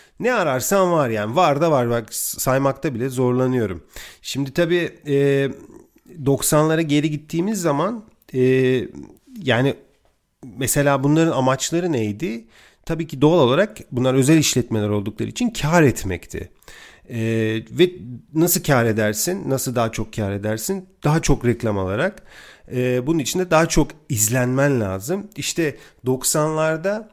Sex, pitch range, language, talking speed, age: male, 115-155 Hz, Turkish, 125 wpm, 40-59